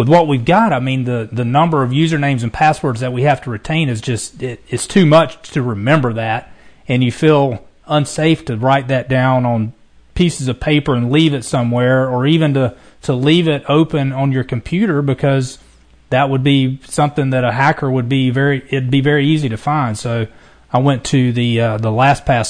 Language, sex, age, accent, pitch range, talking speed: English, male, 30-49, American, 120-145 Hz, 210 wpm